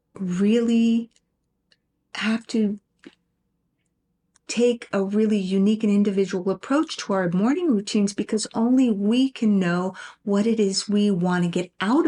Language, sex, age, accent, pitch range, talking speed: English, female, 50-69, American, 185-230 Hz, 135 wpm